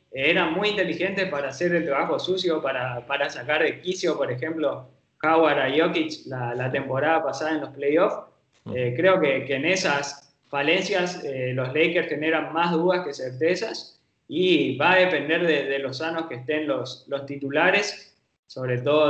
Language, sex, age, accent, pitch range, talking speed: Spanish, male, 20-39, Argentinian, 135-170 Hz, 175 wpm